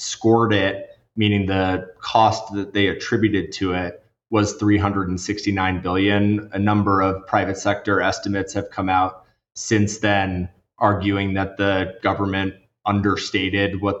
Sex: male